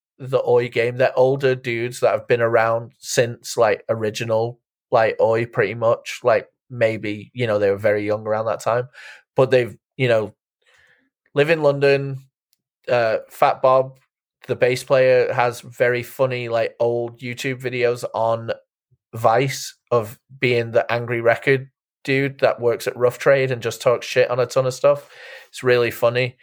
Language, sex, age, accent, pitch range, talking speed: English, male, 20-39, British, 120-145 Hz, 165 wpm